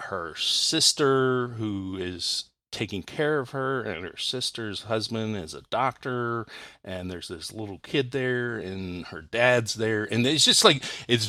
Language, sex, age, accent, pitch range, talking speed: English, male, 40-59, American, 100-125 Hz, 160 wpm